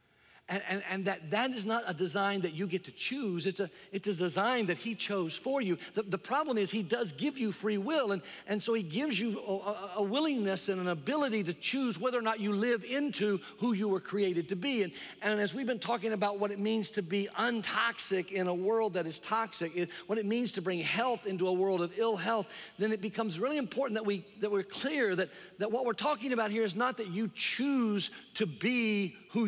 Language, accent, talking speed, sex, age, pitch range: English, American, 235 wpm, male, 50-69, 185-230 Hz